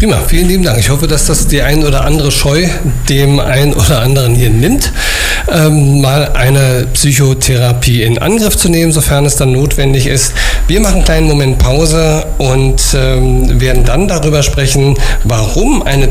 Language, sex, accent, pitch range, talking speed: German, male, German, 125-150 Hz, 170 wpm